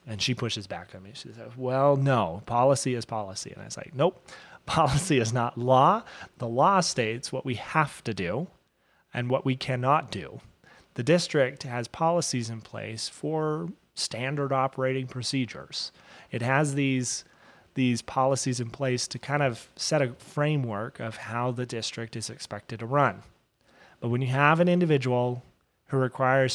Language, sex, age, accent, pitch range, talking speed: English, male, 30-49, American, 115-135 Hz, 165 wpm